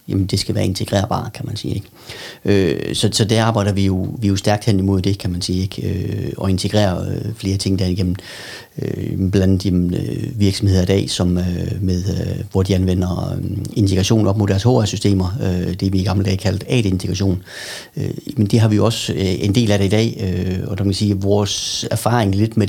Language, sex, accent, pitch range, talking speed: Danish, male, native, 95-110 Hz, 220 wpm